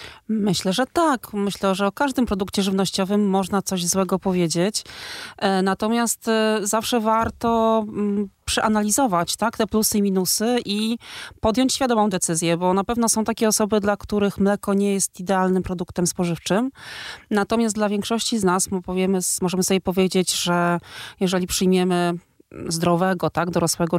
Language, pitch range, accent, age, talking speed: Polish, 185-215 Hz, native, 30-49, 135 wpm